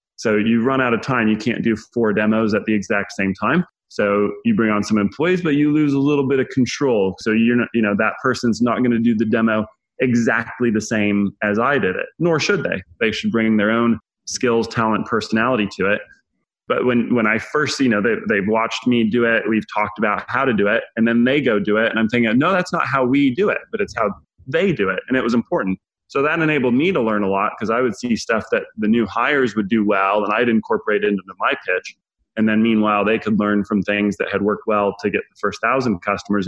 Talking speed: 250 wpm